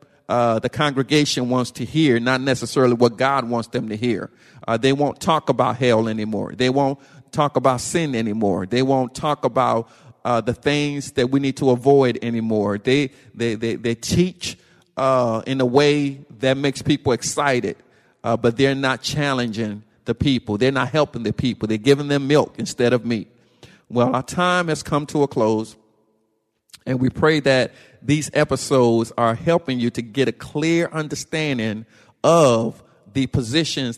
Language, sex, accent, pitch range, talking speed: English, male, American, 115-145 Hz, 170 wpm